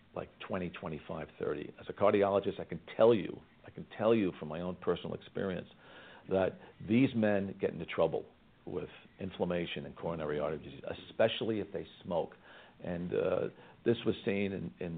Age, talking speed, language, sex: 50-69, 170 wpm, English, male